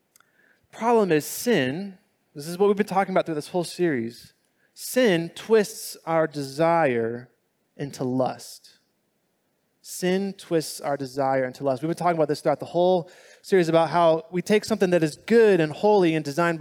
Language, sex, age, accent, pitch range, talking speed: English, male, 20-39, American, 150-210 Hz, 175 wpm